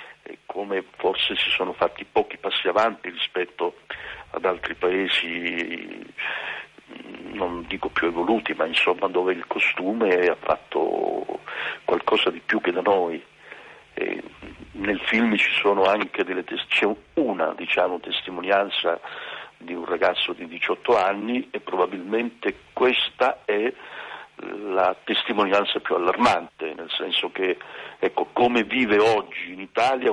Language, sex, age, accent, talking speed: Italian, male, 60-79, native, 130 wpm